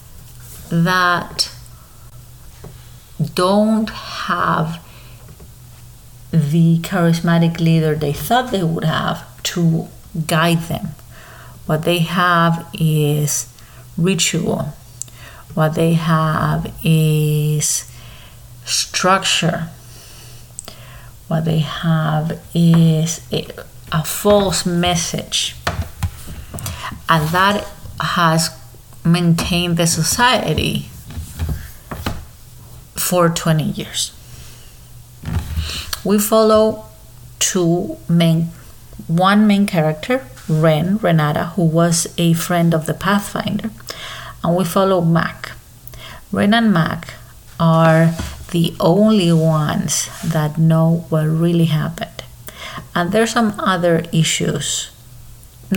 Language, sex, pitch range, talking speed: English, female, 125-175 Hz, 85 wpm